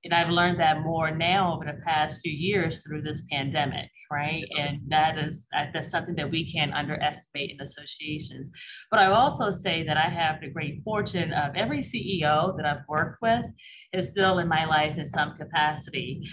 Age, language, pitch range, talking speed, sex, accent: 30-49, English, 150-175 Hz, 190 wpm, female, American